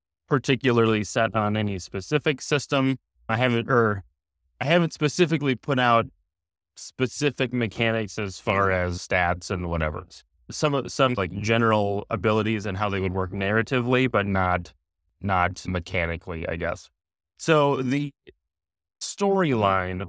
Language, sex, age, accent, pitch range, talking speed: English, male, 20-39, American, 90-120 Hz, 130 wpm